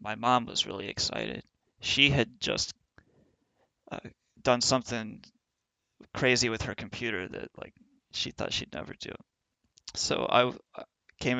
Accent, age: American, 30-49